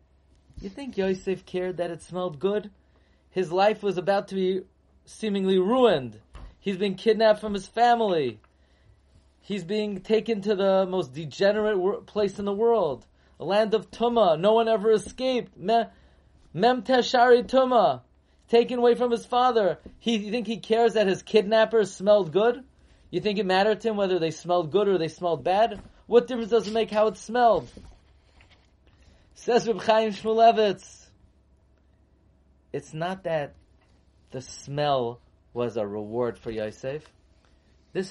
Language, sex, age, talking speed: English, male, 20-39, 145 wpm